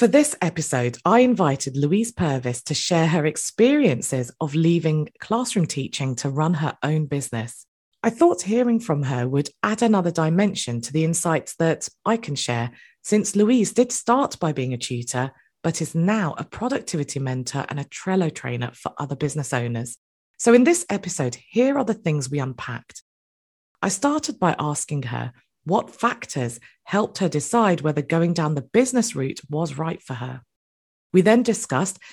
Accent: British